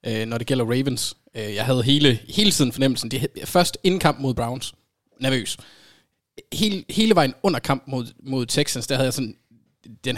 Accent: native